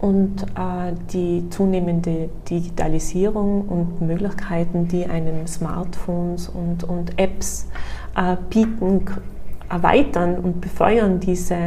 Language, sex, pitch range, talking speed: German, female, 185-220 Hz, 100 wpm